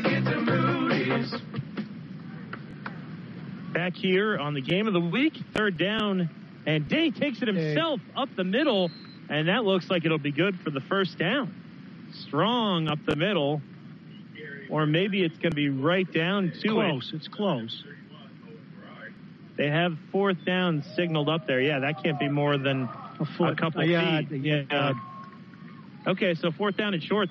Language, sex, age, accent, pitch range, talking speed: English, male, 30-49, American, 160-200 Hz, 150 wpm